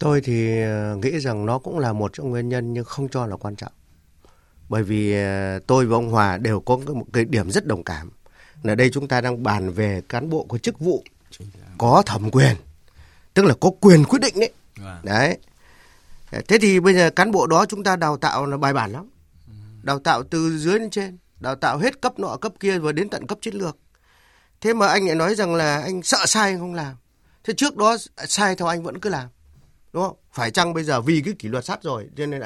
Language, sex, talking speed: Vietnamese, male, 225 wpm